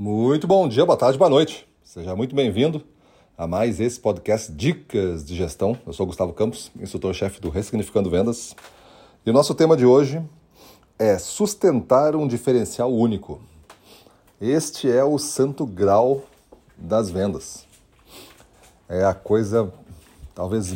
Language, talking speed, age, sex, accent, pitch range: Portuguese, 140 wpm, 40-59, male, Brazilian, 90-125 Hz